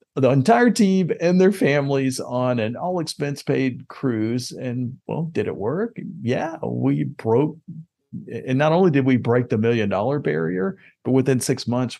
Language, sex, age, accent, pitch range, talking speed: English, male, 40-59, American, 110-135 Hz, 155 wpm